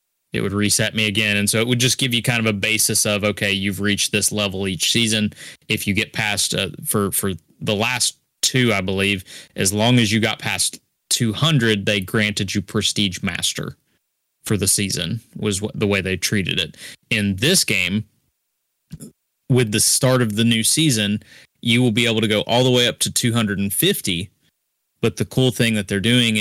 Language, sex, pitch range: English, male, 100-115 Hz